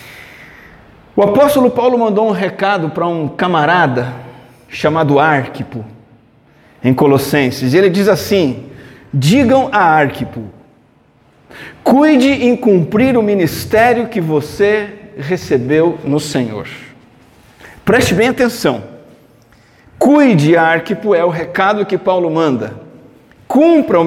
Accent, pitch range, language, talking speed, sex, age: Brazilian, 140-190 Hz, Portuguese, 105 wpm, male, 50-69